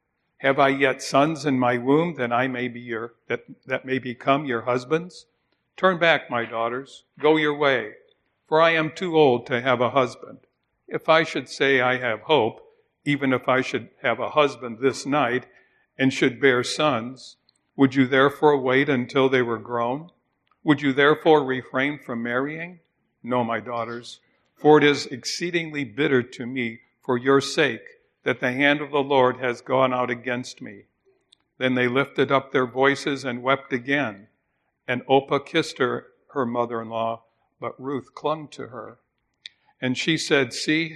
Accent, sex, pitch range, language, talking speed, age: American, male, 125-145 Hz, English, 170 wpm, 60-79